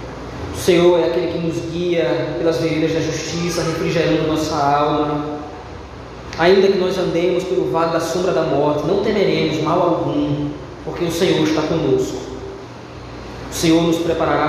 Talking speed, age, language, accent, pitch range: 155 wpm, 20-39, Portuguese, Brazilian, 145-180 Hz